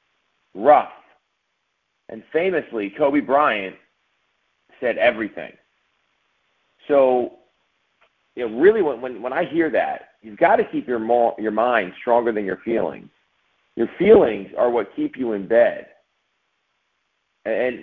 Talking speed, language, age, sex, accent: 130 wpm, English, 50-69, male, American